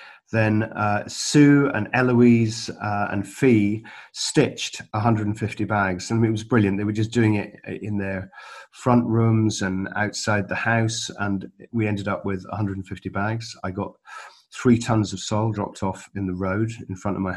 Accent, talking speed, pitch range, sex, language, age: British, 175 wpm, 95-115 Hz, male, English, 40-59